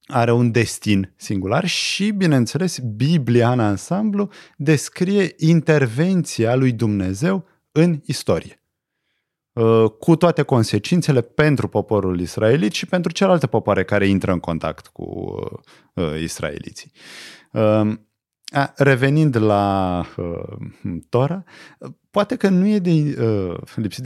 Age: 30-49